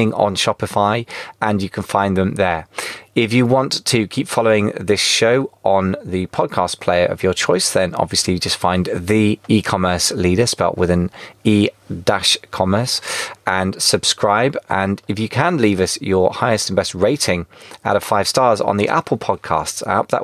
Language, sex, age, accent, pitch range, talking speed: English, male, 20-39, British, 95-115 Hz, 175 wpm